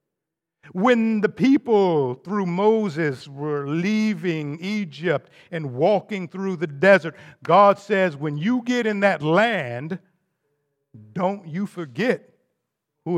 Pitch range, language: 150-210 Hz, English